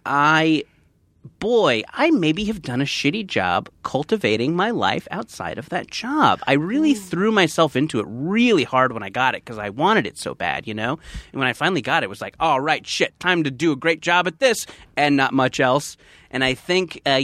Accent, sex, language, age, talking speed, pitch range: American, male, English, 30-49, 225 wpm, 115-165 Hz